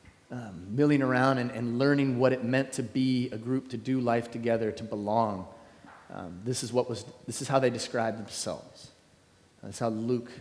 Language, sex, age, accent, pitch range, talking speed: English, male, 30-49, American, 110-135 Hz, 190 wpm